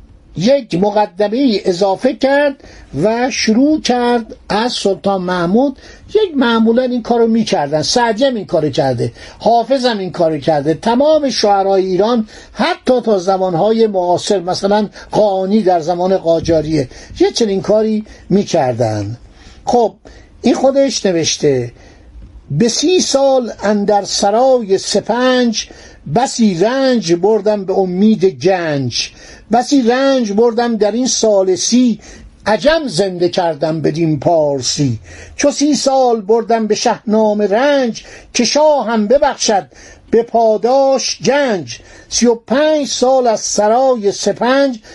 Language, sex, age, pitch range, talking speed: Persian, male, 60-79, 190-255 Hz, 115 wpm